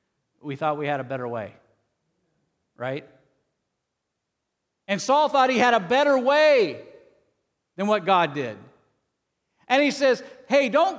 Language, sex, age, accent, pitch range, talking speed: English, male, 50-69, American, 195-280 Hz, 135 wpm